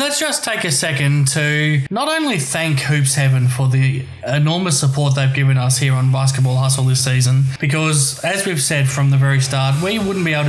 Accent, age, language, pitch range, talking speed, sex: Australian, 20-39, English, 135-165 Hz, 205 wpm, male